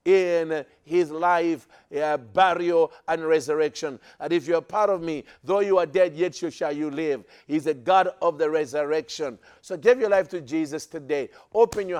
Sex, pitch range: male, 155-190 Hz